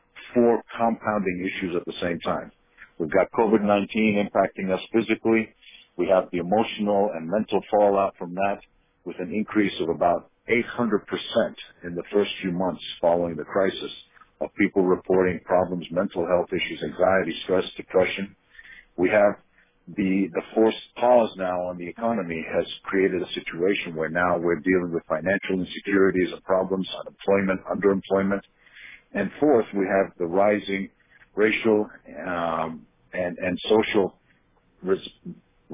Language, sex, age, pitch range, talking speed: English, male, 50-69, 90-105 Hz, 140 wpm